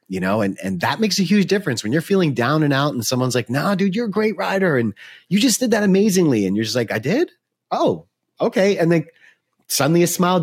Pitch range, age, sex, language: 105-155 Hz, 30-49, male, English